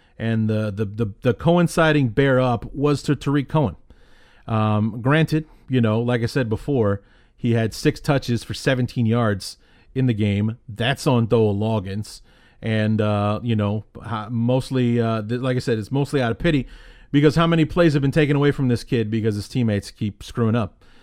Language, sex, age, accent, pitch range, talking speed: English, male, 40-59, American, 110-140 Hz, 185 wpm